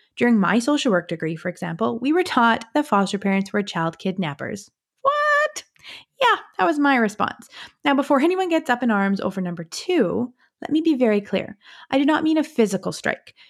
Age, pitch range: 20-39, 190-270 Hz